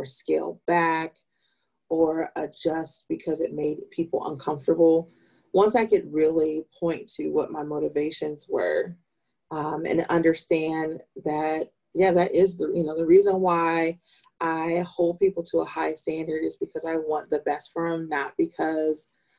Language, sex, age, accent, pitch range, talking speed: English, female, 30-49, American, 155-185 Hz, 150 wpm